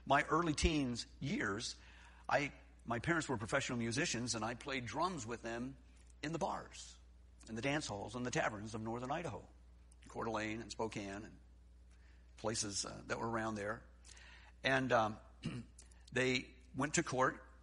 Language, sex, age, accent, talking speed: English, male, 50-69, American, 155 wpm